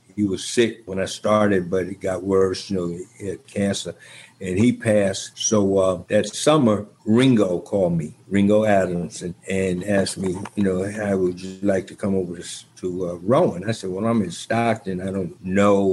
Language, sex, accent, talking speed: English, male, American, 195 wpm